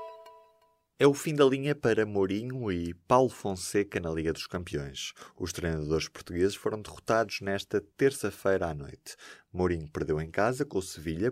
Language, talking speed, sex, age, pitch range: Portuguese, 160 wpm, male, 20-39, 85-115 Hz